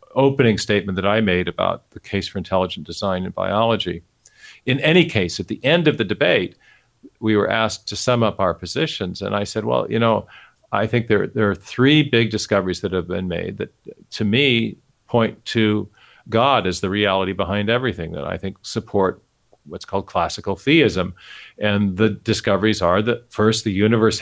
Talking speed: 185 wpm